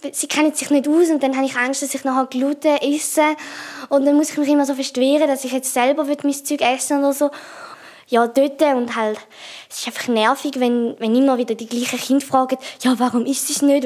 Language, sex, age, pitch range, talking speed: German, female, 20-39, 235-280 Hz, 230 wpm